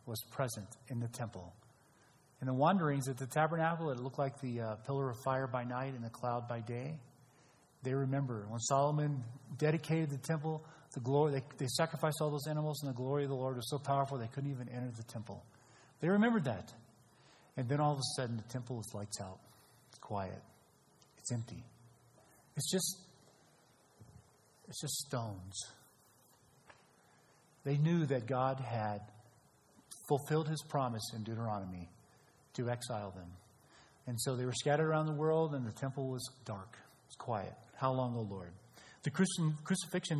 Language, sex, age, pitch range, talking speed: English, male, 40-59, 120-150 Hz, 170 wpm